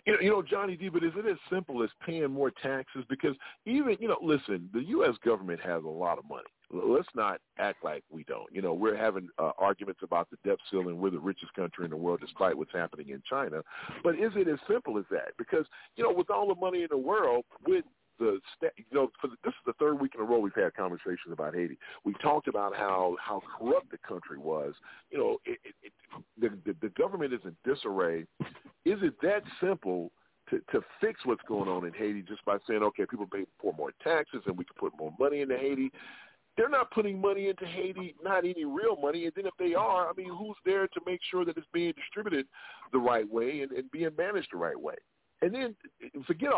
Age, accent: 40-59, American